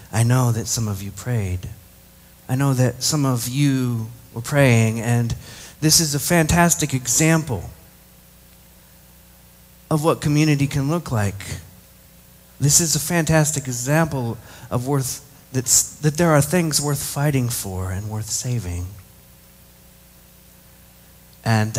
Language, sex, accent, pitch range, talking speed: English, male, American, 90-140 Hz, 125 wpm